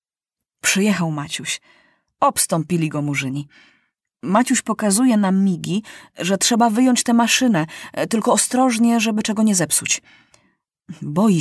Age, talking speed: 30-49, 110 wpm